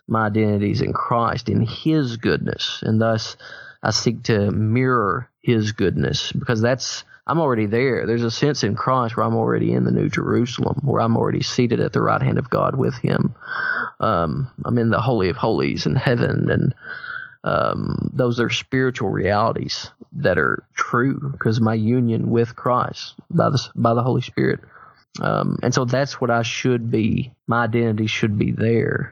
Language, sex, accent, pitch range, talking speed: English, male, American, 115-135 Hz, 185 wpm